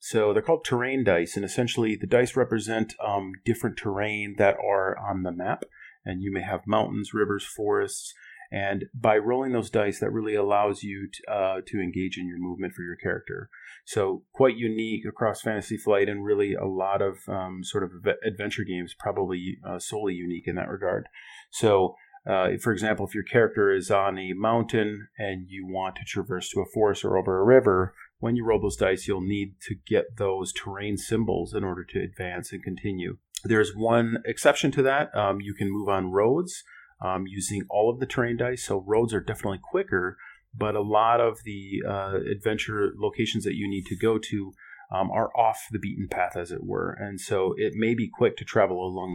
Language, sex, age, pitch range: English, male, 40-59, 95-115 Hz